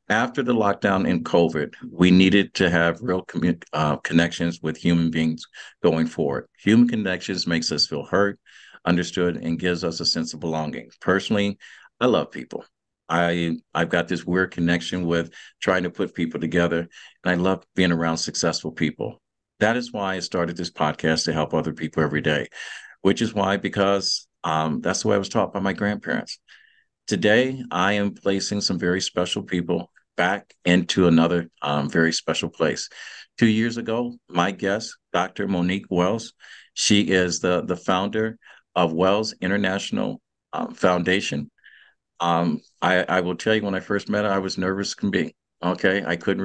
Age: 50-69